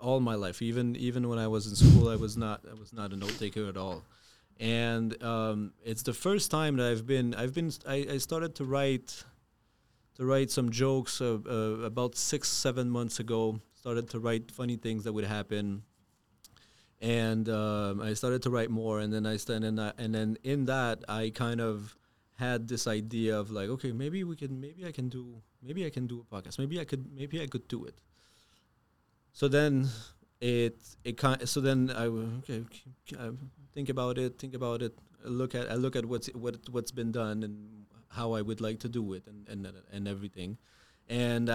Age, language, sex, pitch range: 30-49, English, male, 110-125 Hz